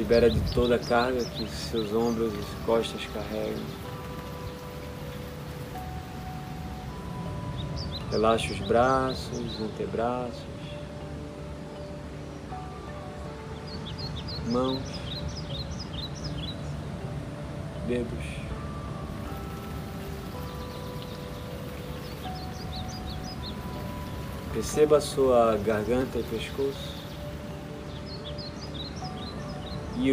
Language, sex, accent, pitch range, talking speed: Portuguese, male, Brazilian, 75-115 Hz, 50 wpm